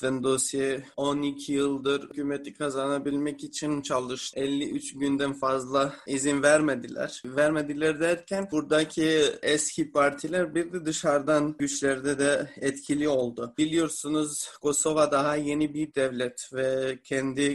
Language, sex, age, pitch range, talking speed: Turkish, male, 30-49, 140-155 Hz, 110 wpm